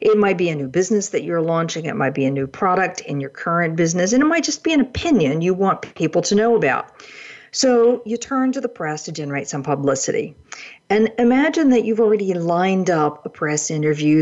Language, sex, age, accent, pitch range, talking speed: English, female, 50-69, American, 150-210 Hz, 220 wpm